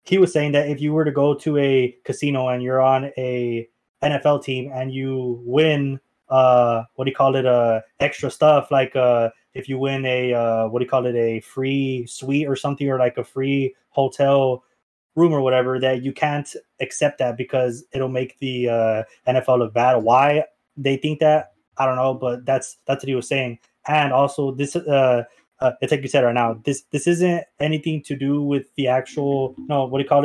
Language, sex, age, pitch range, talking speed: English, male, 20-39, 125-145 Hz, 215 wpm